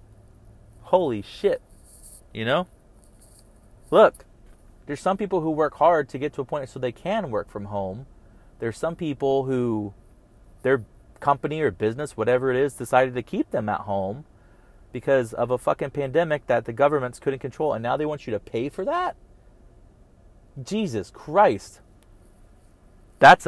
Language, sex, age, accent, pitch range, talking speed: English, male, 30-49, American, 105-140 Hz, 155 wpm